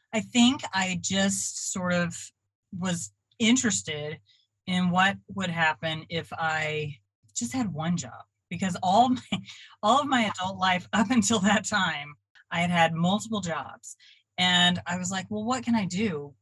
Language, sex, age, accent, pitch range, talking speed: English, female, 30-49, American, 145-185 Hz, 160 wpm